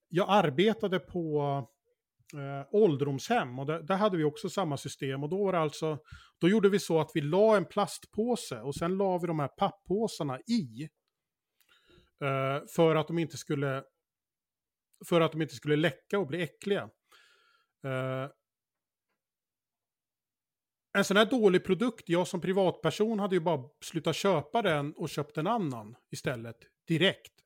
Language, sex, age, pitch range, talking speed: Swedish, male, 30-49, 140-195 Hz, 155 wpm